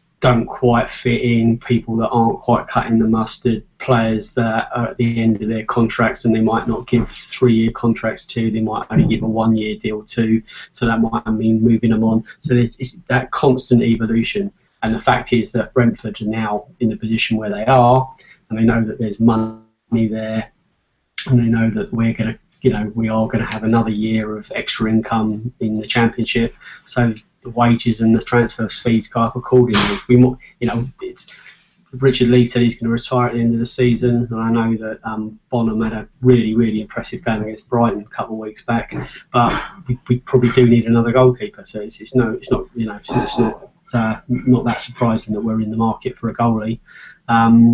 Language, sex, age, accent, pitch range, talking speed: English, male, 20-39, British, 110-120 Hz, 210 wpm